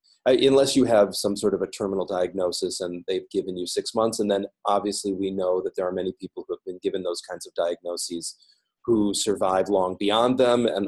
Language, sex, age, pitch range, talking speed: English, male, 30-49, 95-125 Hz, 215 wpm